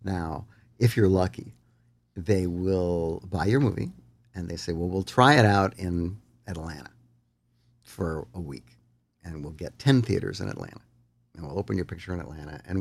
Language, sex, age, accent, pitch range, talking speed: English, male, 50-69, American, 85-120 Hz, 175 wpm